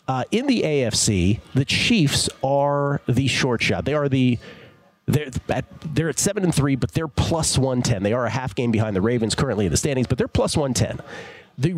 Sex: male